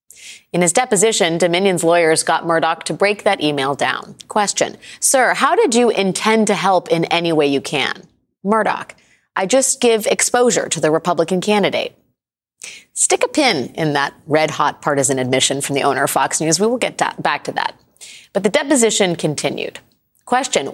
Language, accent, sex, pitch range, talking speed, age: English, American, female, 150-210 Hz, 170 wpm, 30-49